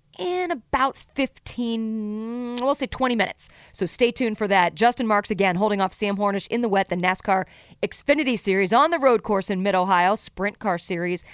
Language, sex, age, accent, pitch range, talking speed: English, female, 40-59, American, 185-245 Hz, 185 wpm